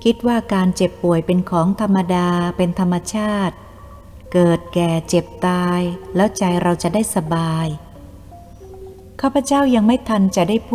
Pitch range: 160-200 Hz